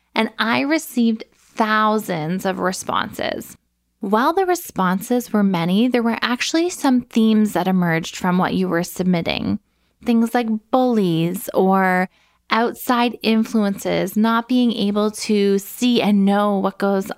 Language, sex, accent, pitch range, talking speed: English, female, American, 195-230 Hz, 135 wpm